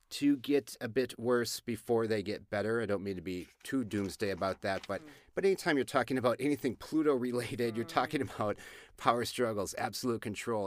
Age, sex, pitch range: 30-49, male, 100-130 Hz